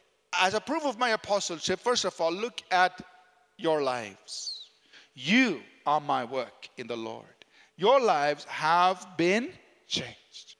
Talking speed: 140 wpm